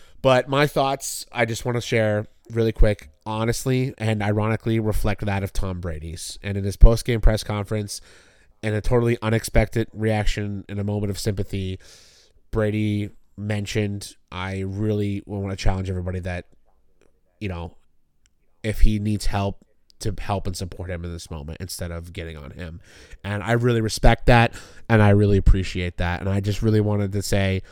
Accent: American